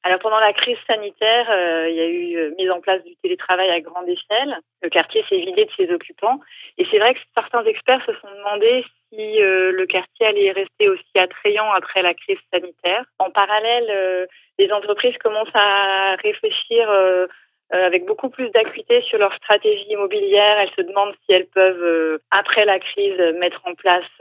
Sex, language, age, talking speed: female, French, 30-49, 195 wpm